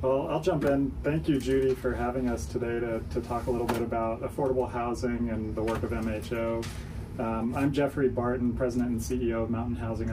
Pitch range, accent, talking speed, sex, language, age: 105-125 Hz, American, 205 wpm, male, English, 30-49